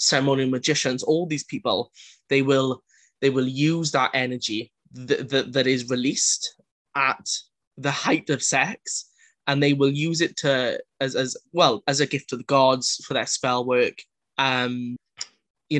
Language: English